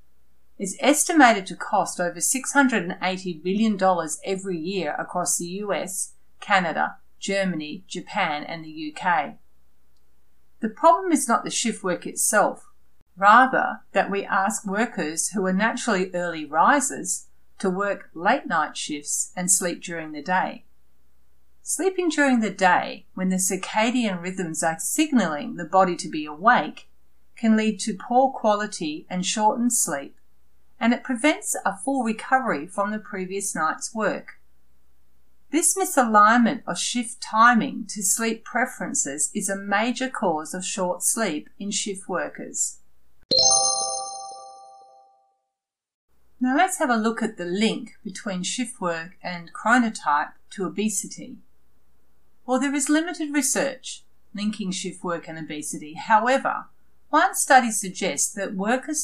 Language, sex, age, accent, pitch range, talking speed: English, female, 40-59, Australian, 155-230 Hz, 130 wpm